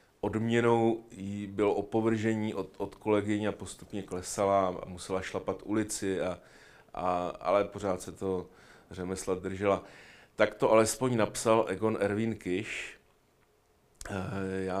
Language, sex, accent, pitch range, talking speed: Czech, male, native, 95-105 Hz, 120 wpm